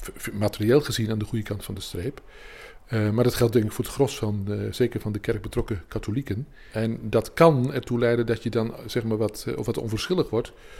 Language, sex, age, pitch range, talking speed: Dutch, male, 50-69, 105-125 Hz, 220 wpm